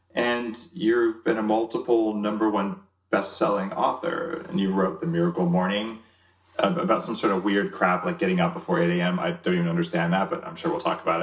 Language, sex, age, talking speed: English, male, 30-49, 205 wpm